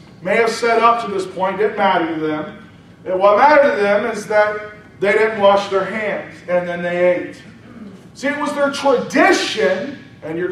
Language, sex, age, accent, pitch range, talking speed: English, male, 40-59, American, 190-260 Hz, 195 wpm